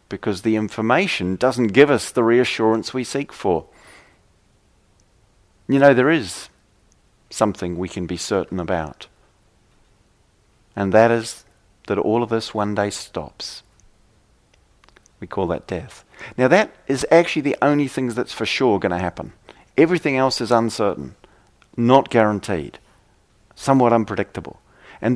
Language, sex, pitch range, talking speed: English, male, 95-135 Hz, 135 wpm